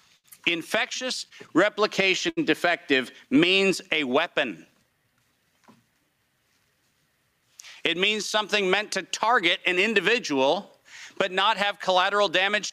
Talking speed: 90 wpm